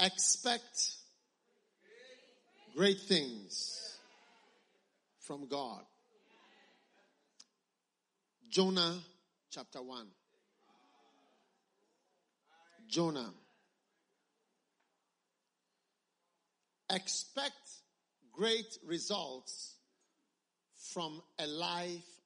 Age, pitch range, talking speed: 50-69, 150-205 Hz, 40 wpm